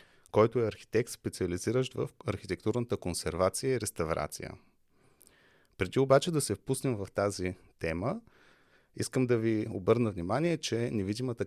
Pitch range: 100-125 Hz